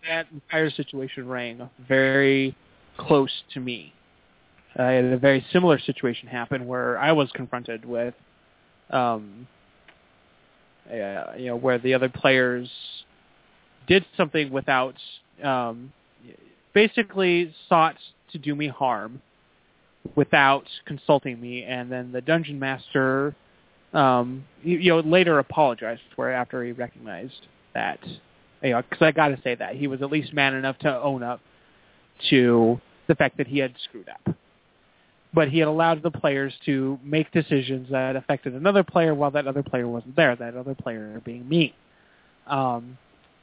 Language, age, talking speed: English, 20-39, 150 wpm